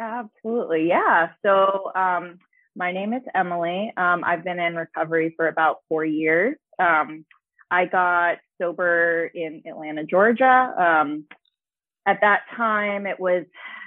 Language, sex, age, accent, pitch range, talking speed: English, female, 20-39, American, 165-200 Hz, 130 wpm